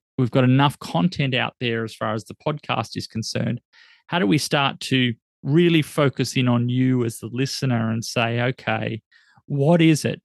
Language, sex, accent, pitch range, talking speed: English, male, Australian, 120-145 Hz, 185 wpm